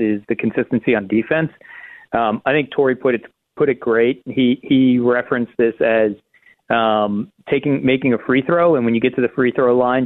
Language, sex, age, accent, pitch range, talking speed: English, male, 40-59, American, 115-145 Hz, 205 wpm